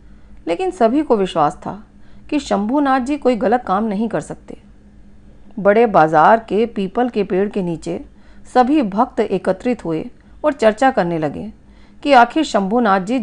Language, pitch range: Hindi, 195-255 Hz